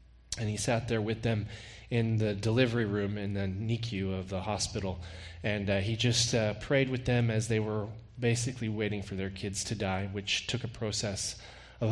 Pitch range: 100-160 Hz